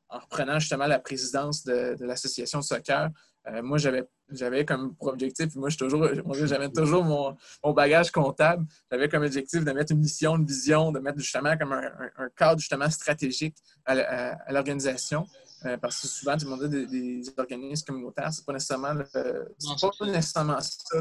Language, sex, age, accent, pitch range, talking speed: French, male, 20-39, Canadian, 135-155 Hz, 185 wpm